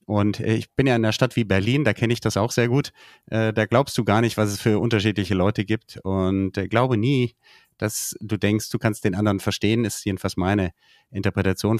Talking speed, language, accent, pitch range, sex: 220 wpm, German, German, 110-140 Hz, male